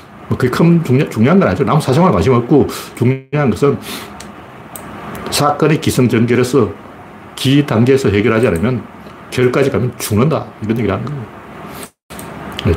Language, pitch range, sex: Korean, 105-145 Hz, male